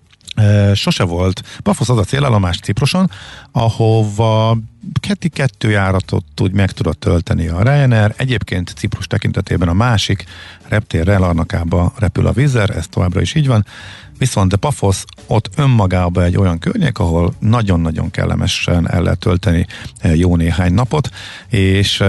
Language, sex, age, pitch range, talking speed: Hungarian, male, 50-69, 90-115 Hz, 135 wpm